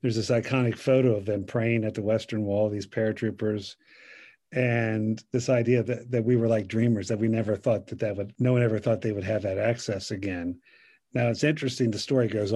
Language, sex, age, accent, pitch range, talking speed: English, male, 50-69, American, 110-130 Hz, 215 wpm